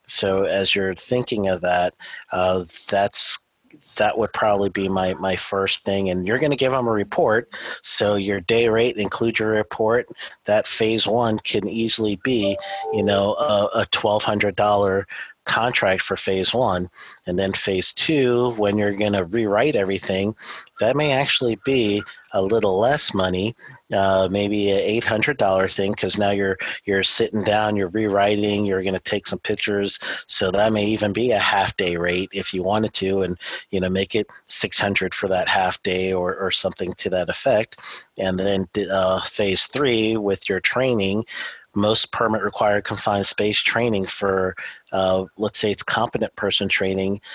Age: 40-59